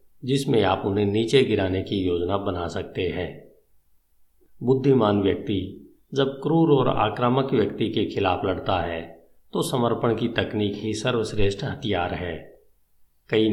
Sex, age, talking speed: male, 50-69, 135 wpm